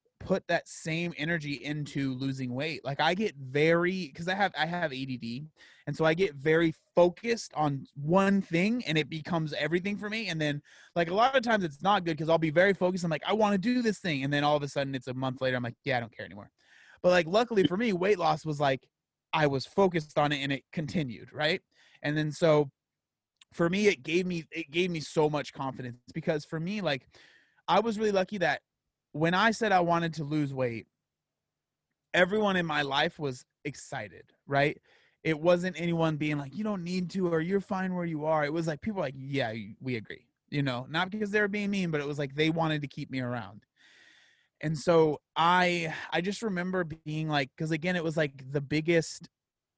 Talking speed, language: 220 wpm, English